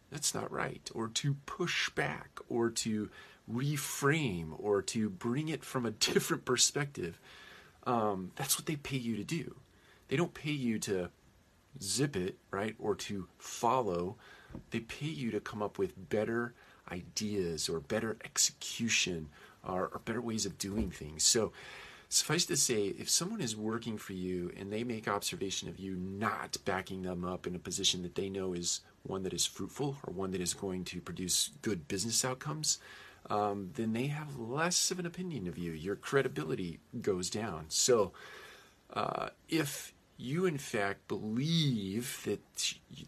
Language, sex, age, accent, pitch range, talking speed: English, male, 40-59, American, 95-125 Hz, 170 wpm